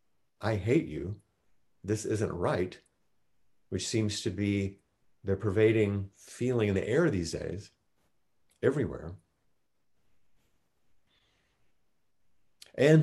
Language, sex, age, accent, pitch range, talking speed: English, male, 50-69, American, 90-110 Hz, 90 wpm